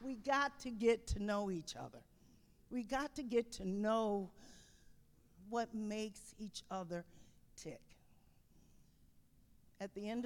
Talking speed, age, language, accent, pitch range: 130 wpm, 50-69, English, American, 170-245 Hz